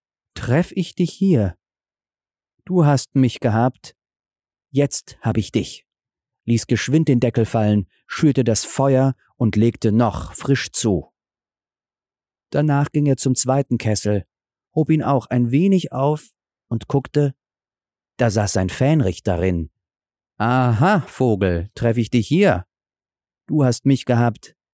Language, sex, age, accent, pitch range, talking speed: German, male, 40-59, German, 100-135 Hz, 130 wpm